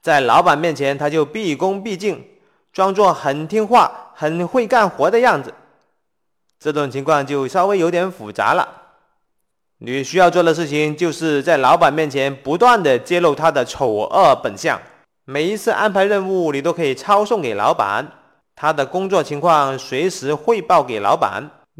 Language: Chinese